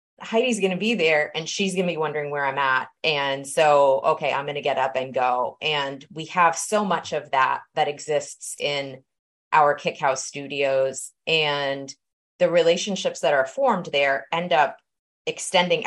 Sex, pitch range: female, 150-195 Hz